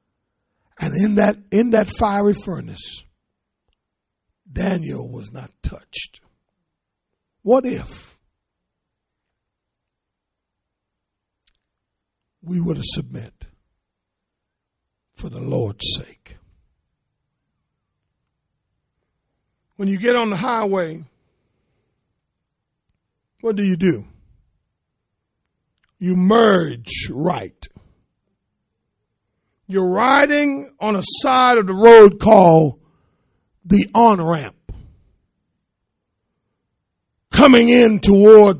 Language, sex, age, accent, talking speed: English, male, 60-79, American, 75 wpm